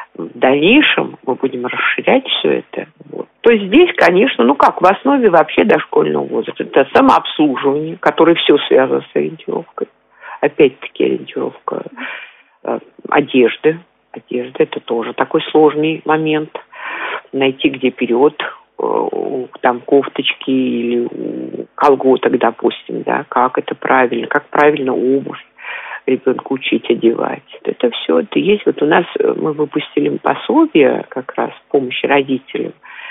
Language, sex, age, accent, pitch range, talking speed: Russian, female, 50-69, native, 130-210 Hz, 125 wpm